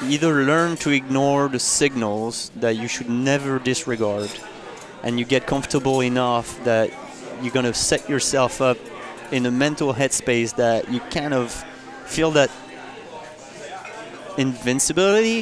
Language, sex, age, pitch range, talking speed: English, male, 30-49, 120-145 Hz, 130 wpm